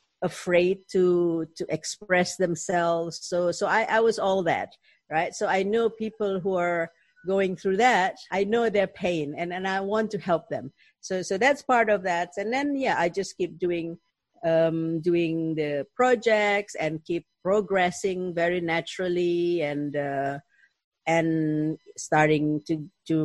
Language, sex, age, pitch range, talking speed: English, female, 50-69, 165-200 Hz, 155 wpm